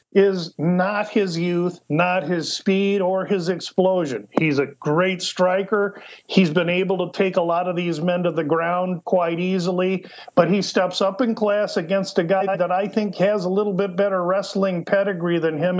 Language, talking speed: English, 190 wpm